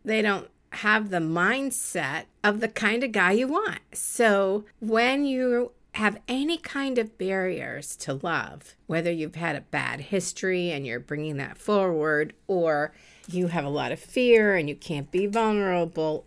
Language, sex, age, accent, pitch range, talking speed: English, female, 50-69, American, 160-225 Hz, 165 wpm